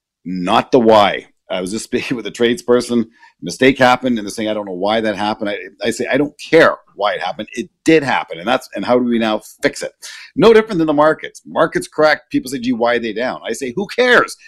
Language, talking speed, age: English, 250 wpm, 50-69